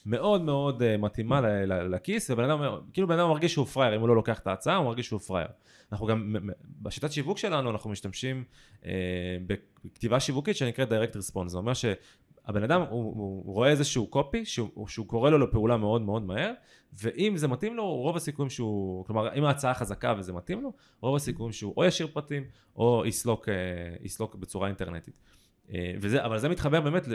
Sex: male